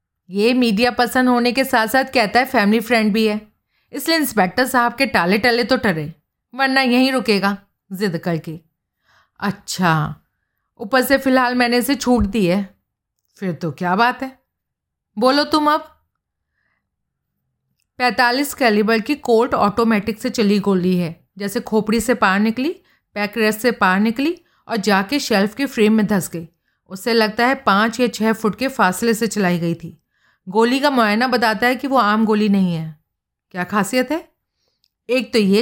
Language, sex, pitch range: Hindi, female, 195-255 Hz